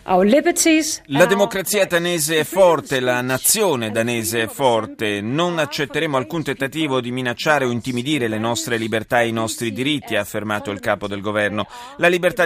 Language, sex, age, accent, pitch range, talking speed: Italian, male, 30-49, native, 115-150 Hz, 160 wpm